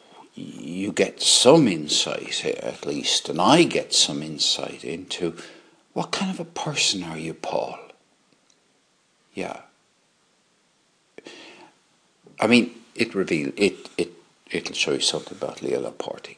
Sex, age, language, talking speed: male, 60-79, English, 125 wpm